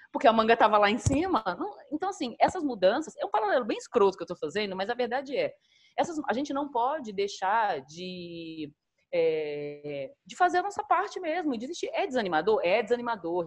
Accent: Brazilian